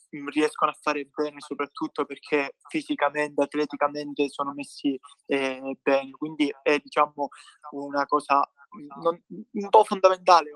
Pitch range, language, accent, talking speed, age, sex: 145-165 Hz, Italian, native, 125 wpm, 20-39, male